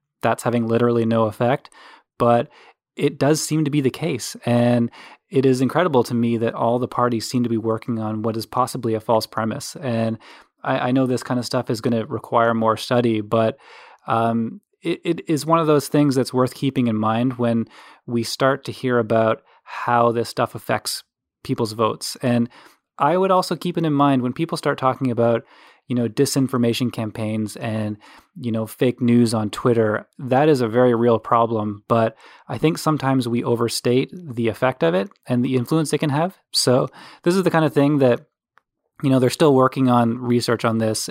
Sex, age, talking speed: male, 20-39, 200 wpm